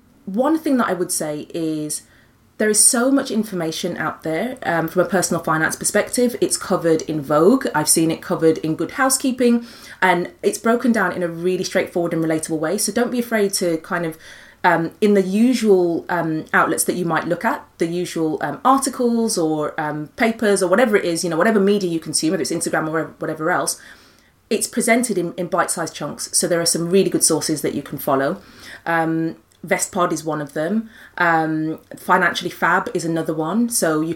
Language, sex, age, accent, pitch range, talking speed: English, female, 30-49, British, 160-200 Hz, 200 wpm